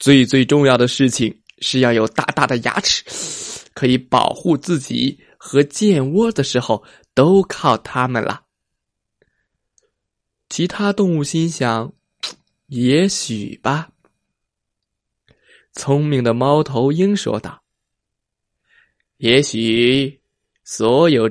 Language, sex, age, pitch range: Chinese, male, 20-39, 115-155 Hz